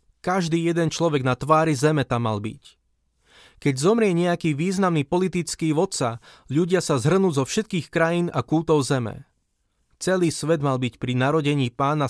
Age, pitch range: 20-39, 125-165 Hz